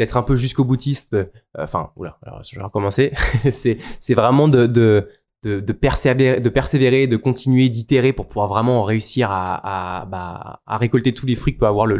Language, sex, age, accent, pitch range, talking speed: French, male, 20-39, French, 110-130 Hz, 205 wpm